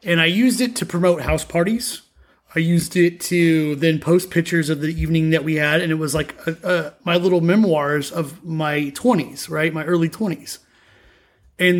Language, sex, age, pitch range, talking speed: English, male, 30-49, 155-195 Hz, 195 wpm